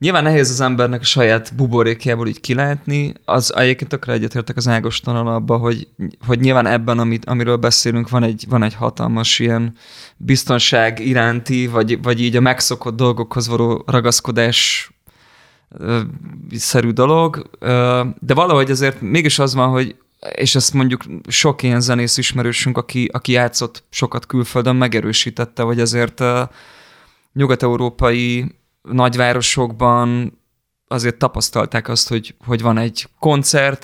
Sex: male